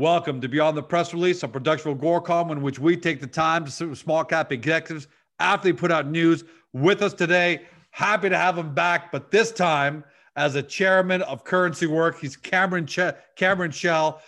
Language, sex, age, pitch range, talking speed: English, male, 40-59, 145-175 Hz, 200 wpm